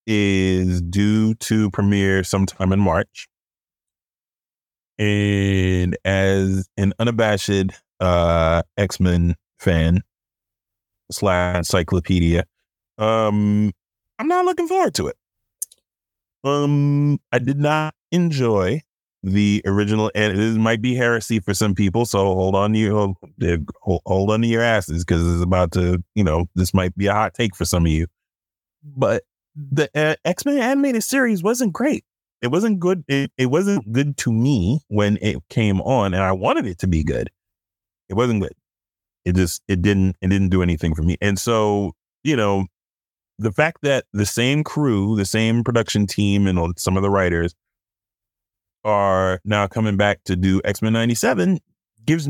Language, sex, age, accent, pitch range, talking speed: English, male, 30-49, American, 95-125 Hz, 150 wpm